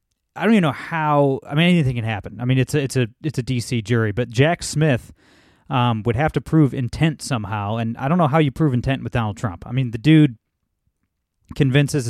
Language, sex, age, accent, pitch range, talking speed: English, male, 30-49, American, 120-145 Hz, 230 wpm